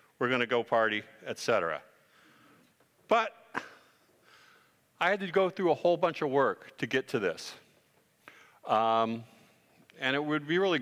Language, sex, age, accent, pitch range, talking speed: English, male, 50-69, American, 125-170 Hz, 155 wpm